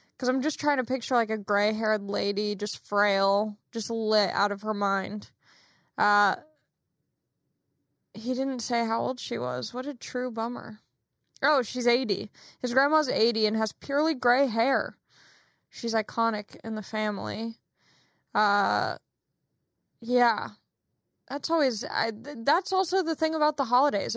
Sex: female